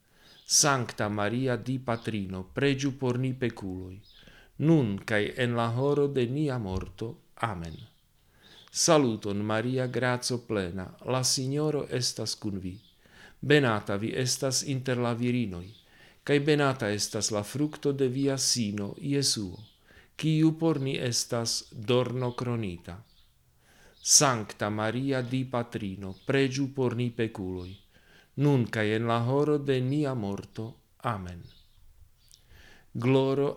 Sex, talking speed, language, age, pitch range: male, 110 wpm, Slovak, 50-69, 100-135 Hz